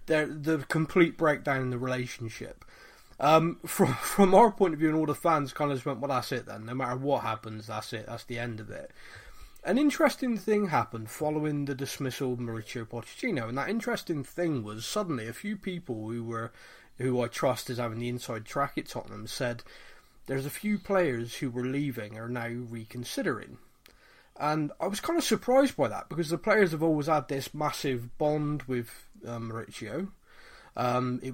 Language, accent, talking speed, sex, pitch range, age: English, British, 190 wpm, male, 125-170 Hz, 30-49